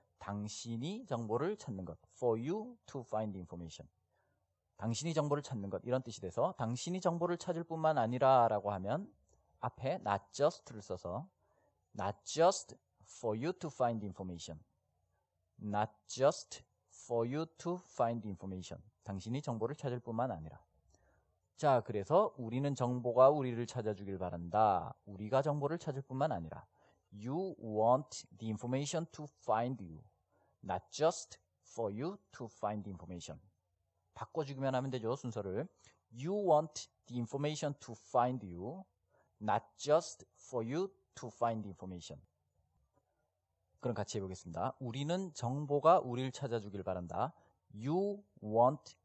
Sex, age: male, 40-59